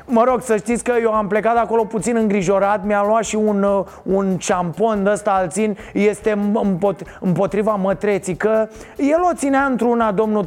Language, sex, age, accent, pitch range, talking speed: Romanian, male, 30-49, native, 215-285 Hz, 170 wpm